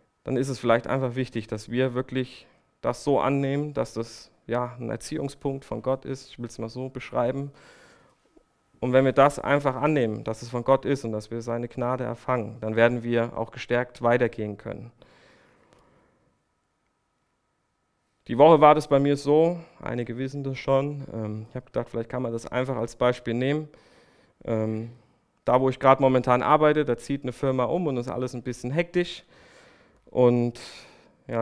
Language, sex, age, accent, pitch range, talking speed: German, male, 30-49, German, 115-135 Hz, 170 wpm